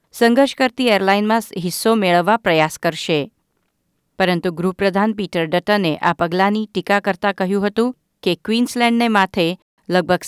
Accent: native